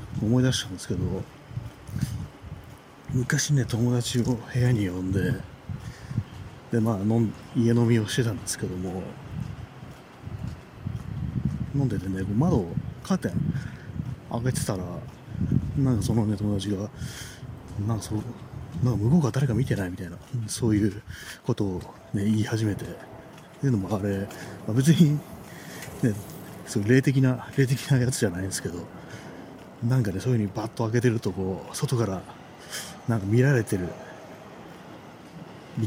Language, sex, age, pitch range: Japanese, male, 40-59, 100-125 Hz